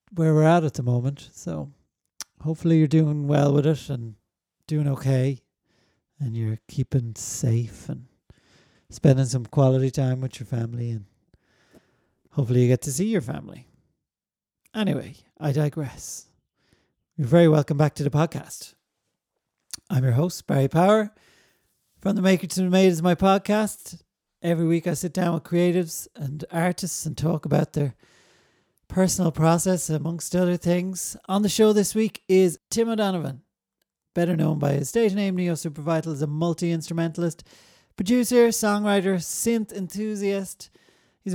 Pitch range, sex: 145-185 Hz, male